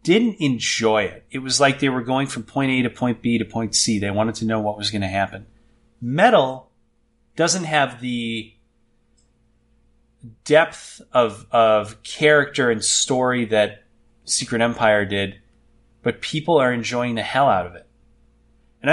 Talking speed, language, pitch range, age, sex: 160 wpm, English, 110-130 Hz, 30-49, male